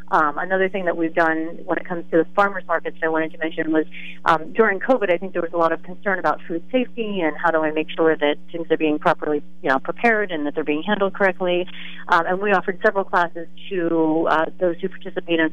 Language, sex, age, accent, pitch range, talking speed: English, female, 40-59, American, 155-180 Hz, 255 wpm